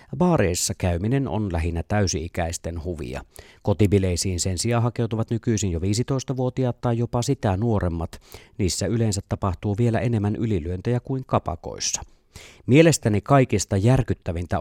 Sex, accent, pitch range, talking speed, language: male, native, 90-115 Hz, 115 wpm, Finnish